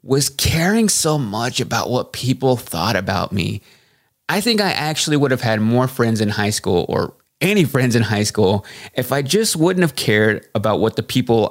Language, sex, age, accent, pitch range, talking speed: English, male, 20-39, American, 110-140 Hz, 200 wpm